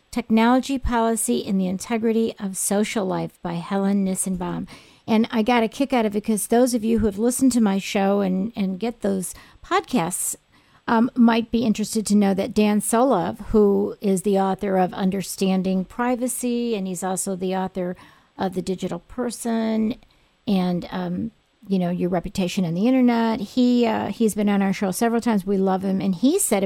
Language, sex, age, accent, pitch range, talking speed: English, female, 50-69, American, 195-245 Hz, 185 wpm